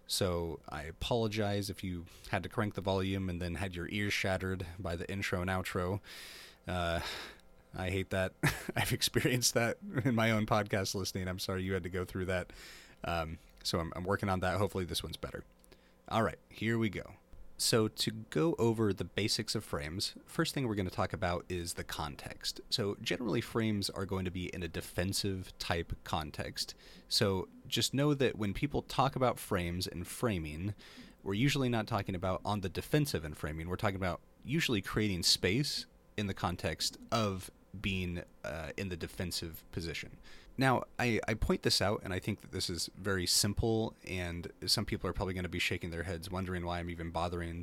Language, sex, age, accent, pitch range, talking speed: English, male, 30-49, American, 90-110 Hz, 195 wpm